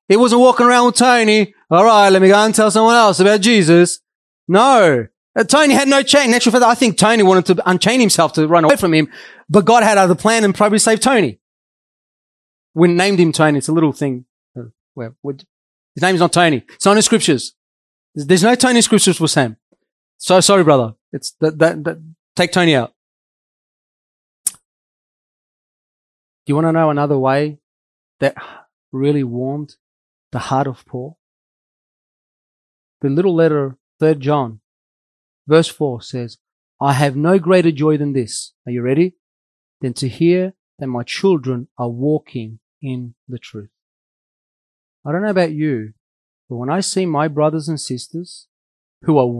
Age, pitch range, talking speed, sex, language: 30-49, 130-195 Hz, 175 wpm, male, English